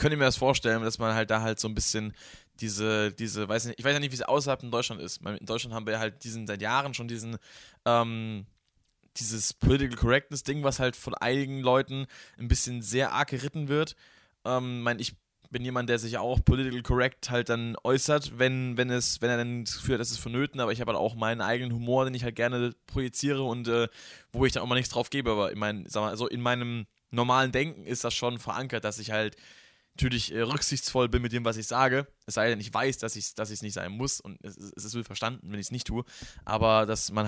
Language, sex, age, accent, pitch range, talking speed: German, male, 20-39, German, 110-125 Hz, 245 wpm